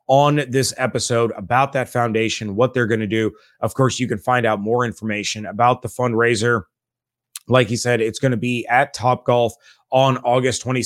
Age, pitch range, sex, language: 30-49, 115-135 Hz, male, English